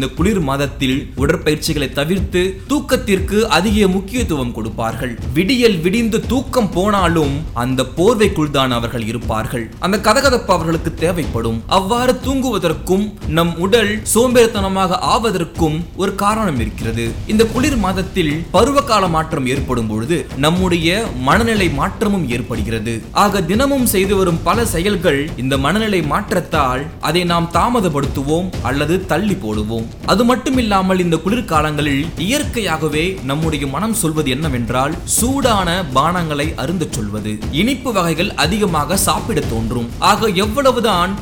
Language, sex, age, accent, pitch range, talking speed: Tamil, male, 20-39, native, 140-200 Hz, 95 wpm